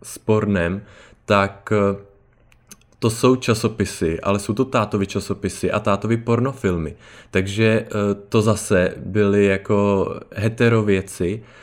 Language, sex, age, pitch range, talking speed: Czech, male, 20-39, 100-115 Hz, 100 wpm